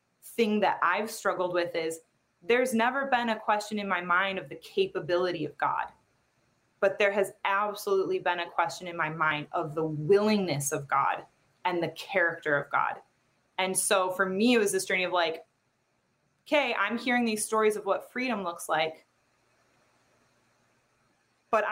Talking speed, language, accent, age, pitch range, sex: 165 wpm, English, American, 20-39, 180-235 Hz, female